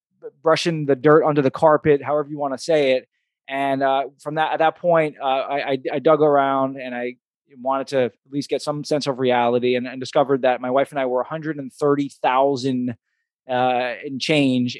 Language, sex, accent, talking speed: English, male, American, 215 wpm